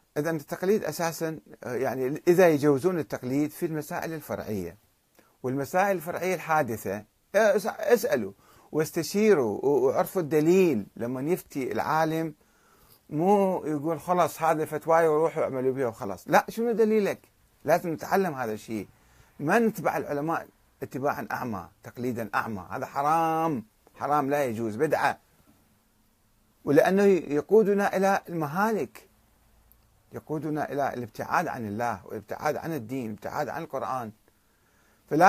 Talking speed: 110 wpm